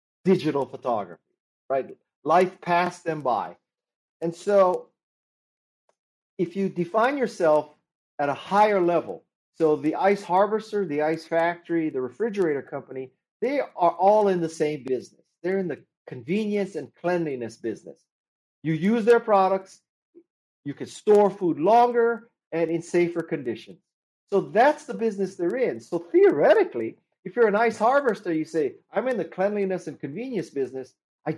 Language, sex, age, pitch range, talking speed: English, male, 40-59, 150-205 Hz, 145 wpm